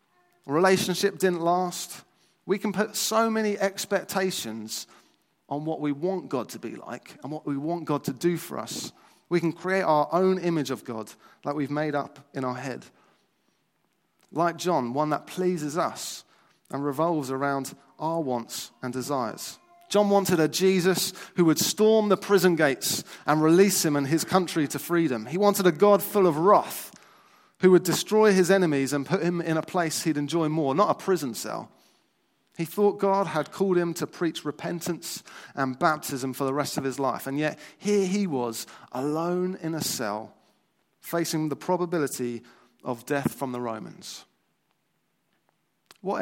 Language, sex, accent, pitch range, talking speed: English, male, British, 140-185 Hz, 170 wpm